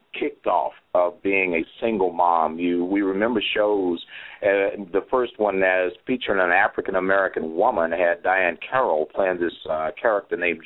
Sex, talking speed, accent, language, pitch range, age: male, 165 wpm, American, English, 95-130 Hz, 50-69